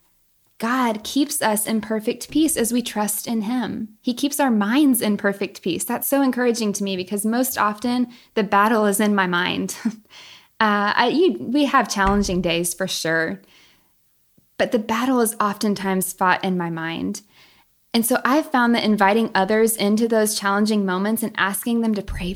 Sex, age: female, 10-29